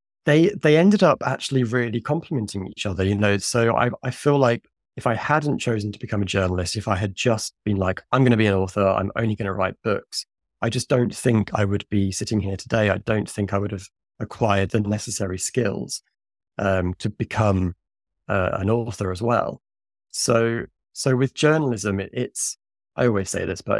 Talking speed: 205 wpm